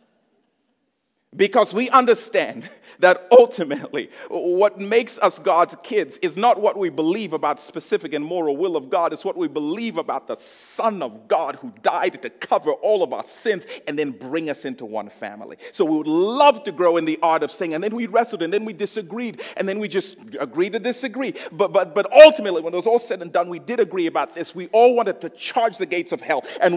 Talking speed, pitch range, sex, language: 220 wpm, 170-270 Hz, male, English